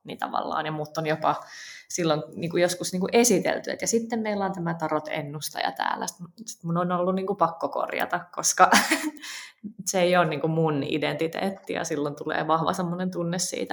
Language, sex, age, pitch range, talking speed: Finnish, female, 20-39, 150-180 Hz, 190 wpm